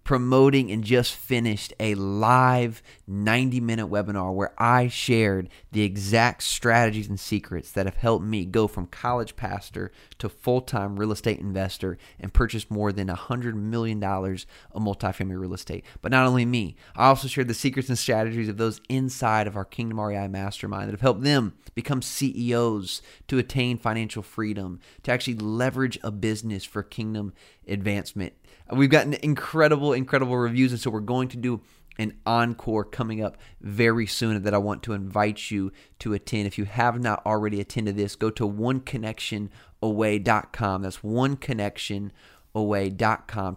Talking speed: 155 wpm